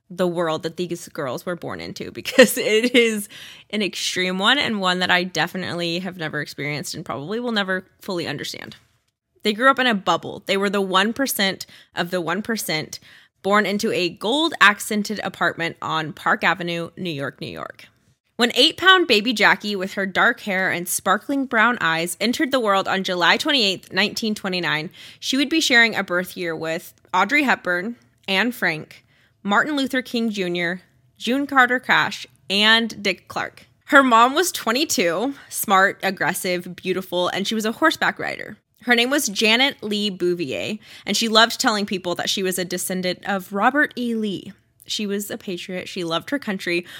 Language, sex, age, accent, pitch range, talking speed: English, female, 20-39, American, 180-235 Hz, 170 wpm